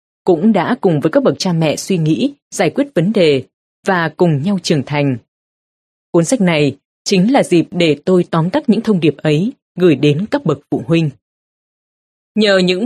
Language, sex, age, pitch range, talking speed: Vietnamese, female, 20-39, 155-200 Hz, 190 wpm